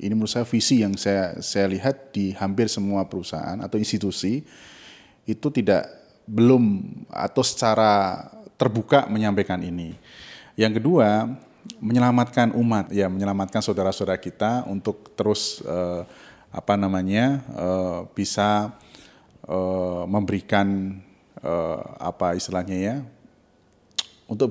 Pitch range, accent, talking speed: 95-115 Hz, native, 110 wpm